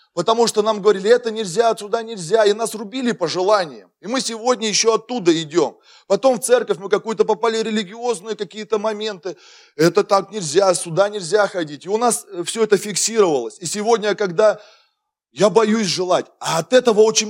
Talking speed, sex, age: 175 wpm, male, 20-39